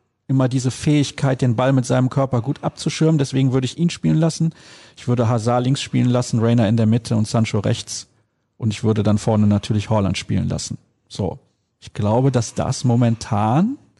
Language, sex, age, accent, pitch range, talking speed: German, male, 40-59, German, 115-140 Hz, 190 wpm